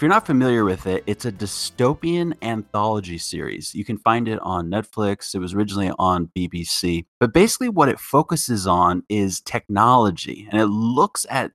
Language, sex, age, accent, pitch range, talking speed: English, male, 30-49, American, 95-120 Hz, 175 wpm